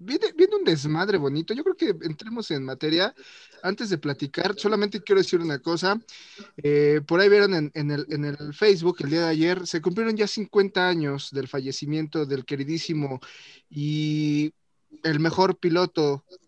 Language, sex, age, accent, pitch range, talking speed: Spanish, male, 30-49, Mexican, 145-180 Hz, 160 wpm